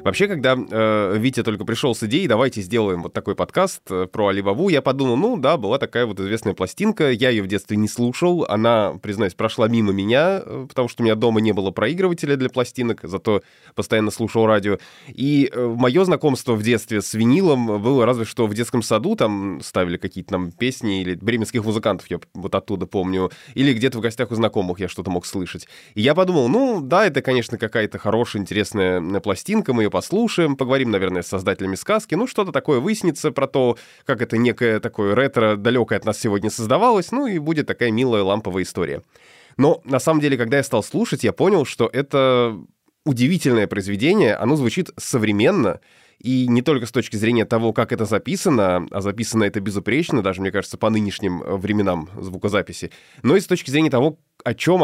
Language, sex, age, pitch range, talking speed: Russian, male, 20-39, 100-135 Hz, 185 wpm